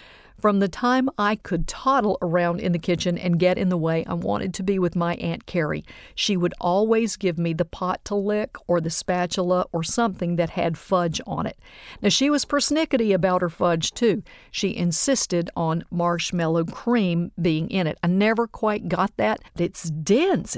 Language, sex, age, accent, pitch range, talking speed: English, female, 50-69, American, 170-210 Hz, 190 wpm